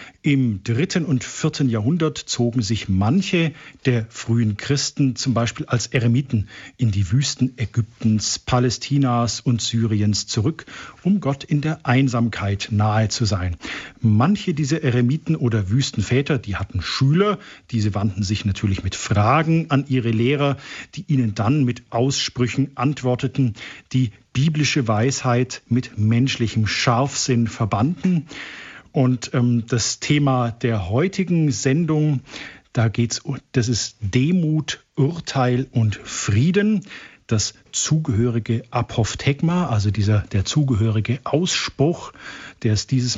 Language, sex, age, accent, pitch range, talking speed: German, male, 50-69, German, 115-140 Hz, 120 wpm